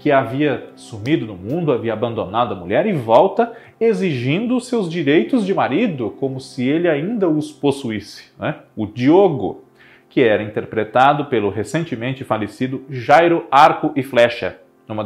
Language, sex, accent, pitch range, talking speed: Portuguese, male, Brazilian, 110-160 Hz, 145 wpm